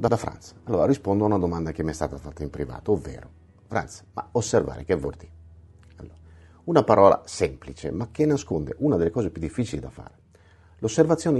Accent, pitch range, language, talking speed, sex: native, 80-120 Hz, Italian, 190 wpm, male